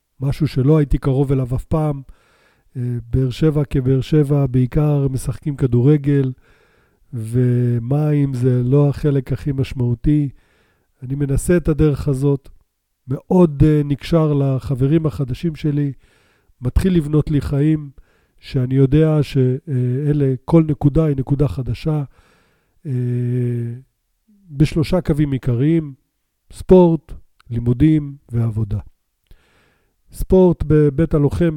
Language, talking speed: Hebrew, 95 wpm